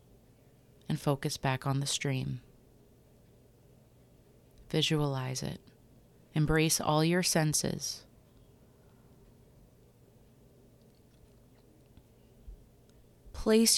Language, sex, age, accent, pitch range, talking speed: English, female, 30-49, American, 125-150 Hz, 55 wpm